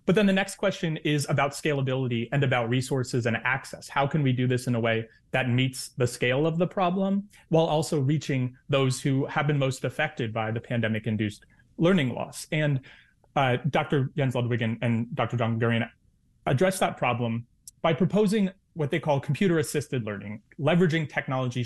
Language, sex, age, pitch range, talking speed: English, male, 30-49, 120-155 Hz, 175 wpm